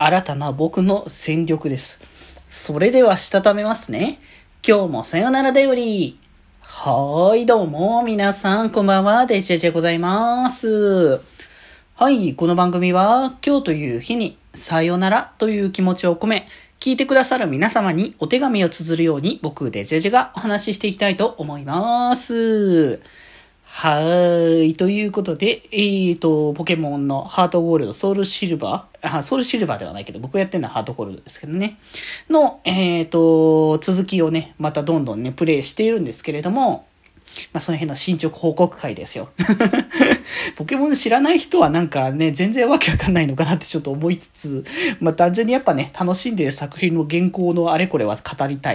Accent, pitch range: native, 155-220 Hz